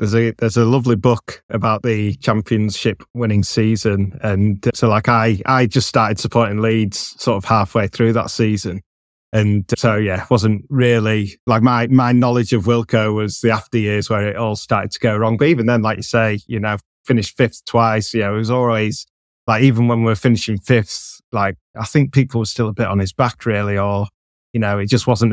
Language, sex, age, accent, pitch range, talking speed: English, male, 20-39, British, 105-120 Hz, 215 wpm